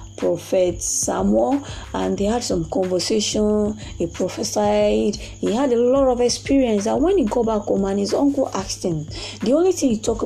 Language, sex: English, female